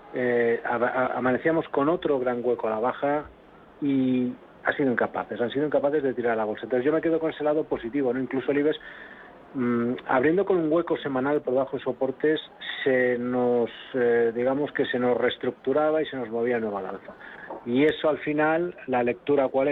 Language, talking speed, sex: Spanish, 205 wpm, male